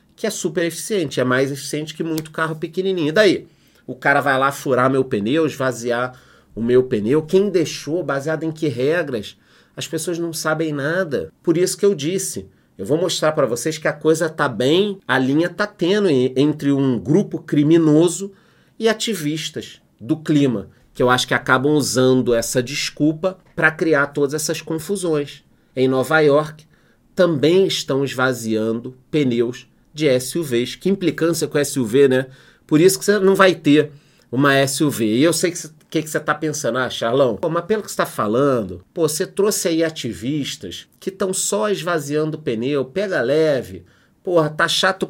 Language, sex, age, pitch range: Portuguese, male, 30-49, 130-170 Hz